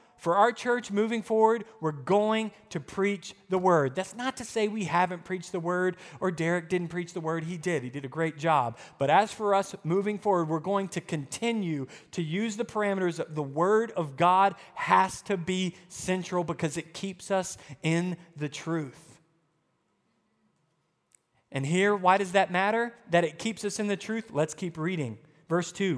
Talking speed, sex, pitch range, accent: 185 wpm, male, 170-215 Hz, American